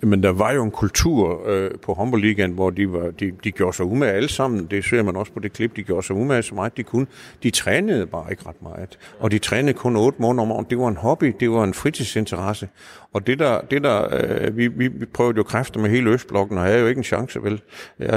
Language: Danish